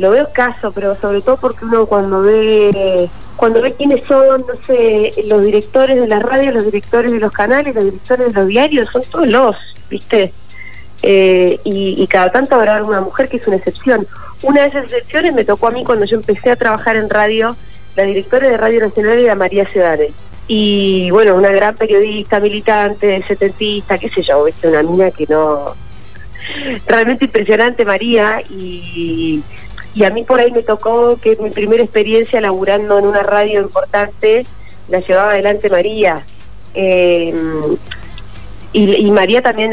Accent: Argentinian